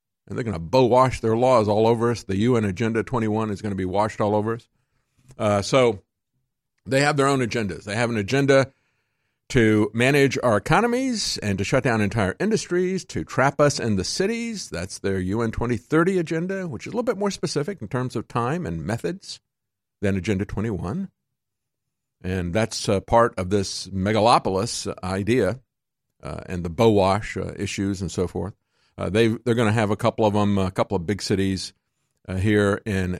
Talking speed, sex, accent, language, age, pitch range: 190 wpm, male, American, English, 50-69, 95-135 Hz